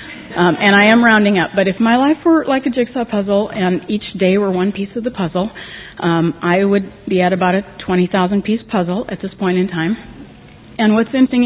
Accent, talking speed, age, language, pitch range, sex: American, 215 wpm, 40-59, English, 175-200 Hz, female